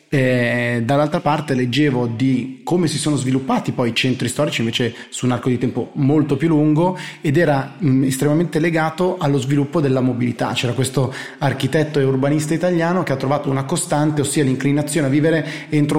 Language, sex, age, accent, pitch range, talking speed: Italian, male, 30-49, native, 120-150 Hz, 175 wpm